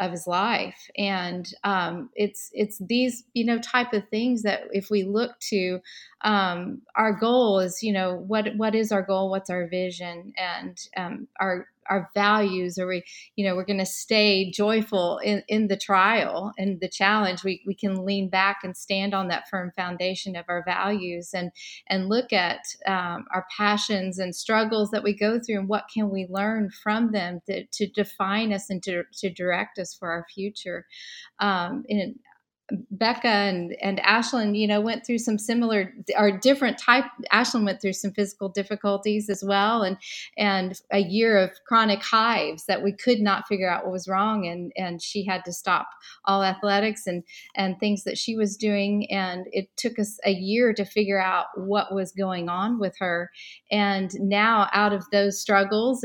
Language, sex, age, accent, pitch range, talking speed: English, female, 40-59, American, 190-215 Hz, 185 wpm